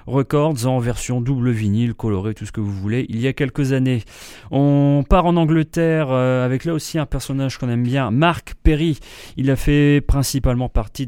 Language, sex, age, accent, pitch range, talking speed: English, male, 30-49, French, 110-140 Hz, 190 wpm